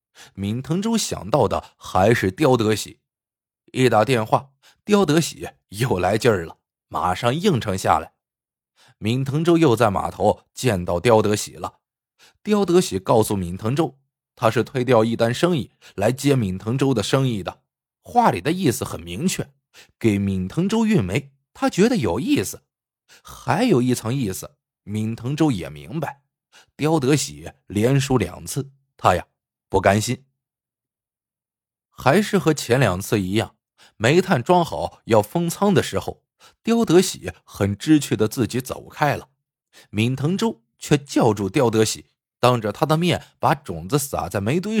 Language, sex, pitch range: Chinese, male, 110-155 Hz